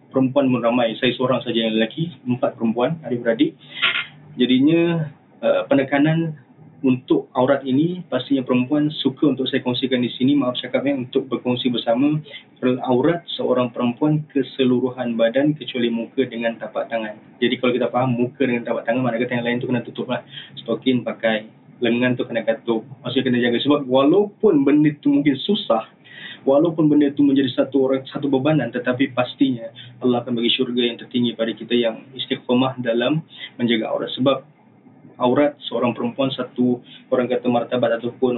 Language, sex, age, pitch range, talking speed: Malay, male, 20-39, 120-135 Hz, 165 wpm